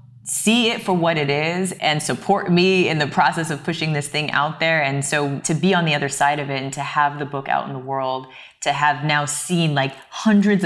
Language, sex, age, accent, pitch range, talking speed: English, female, 20-39, American, 145-190 Hz, 240 wpm